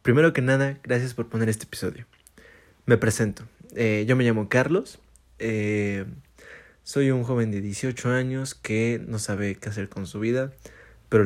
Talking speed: 165 wpm